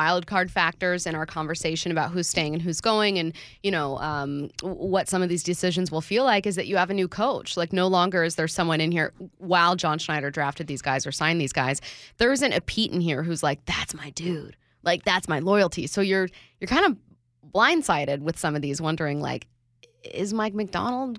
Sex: female